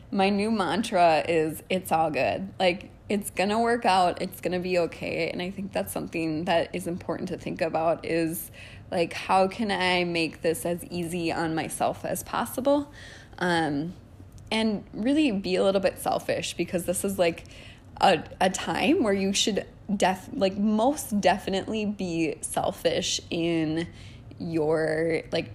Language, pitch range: English, 165-205 Hz